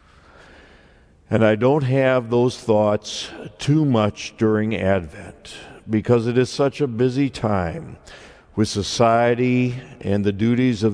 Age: 60-79